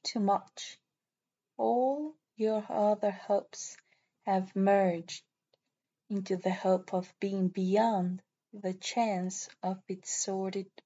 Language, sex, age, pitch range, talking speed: English, female, 20-39, 185-215 Hz, 105 wpm